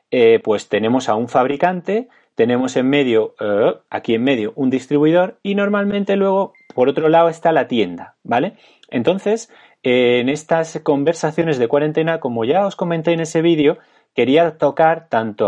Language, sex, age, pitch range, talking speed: Spanish, male, 30-49, 130-185 Hz, 165 wpm